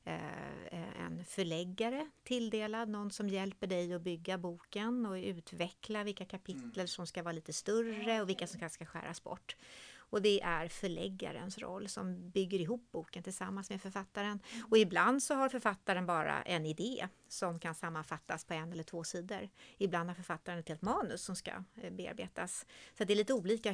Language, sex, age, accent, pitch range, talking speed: Swedish, female, 30-49, native, 170-215 Hz, 170 wpm